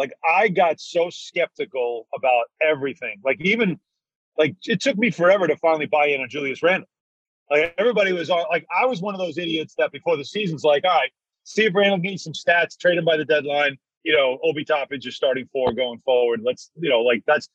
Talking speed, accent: 225 wpm, American